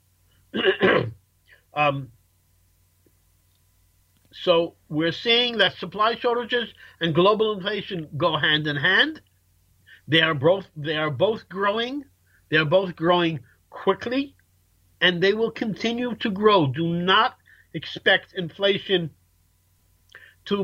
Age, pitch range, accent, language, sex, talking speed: 50-69, 135-200 Hz, American, English, male, 110 wpm